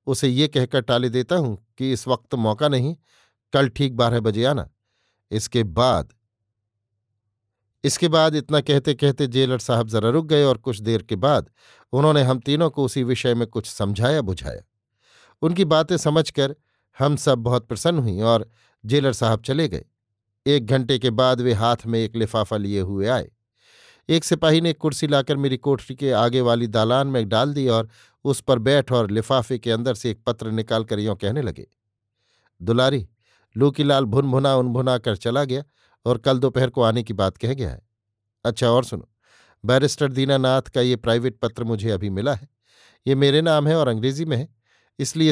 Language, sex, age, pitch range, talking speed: Hindi, male, 50-69, 110-140 Hz, 185 wpm